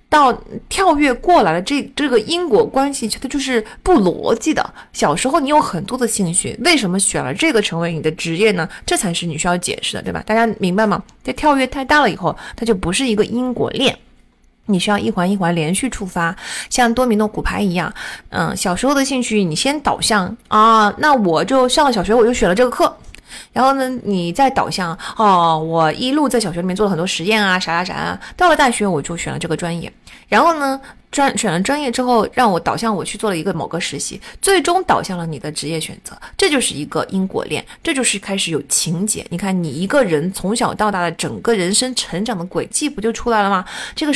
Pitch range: 180-255 Hz